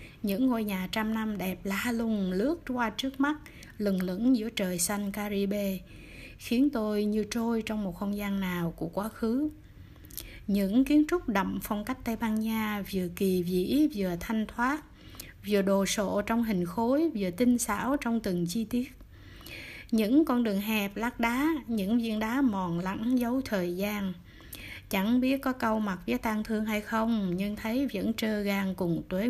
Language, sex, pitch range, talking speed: Vietnamese, female, 195-240 Hz, 180 wpm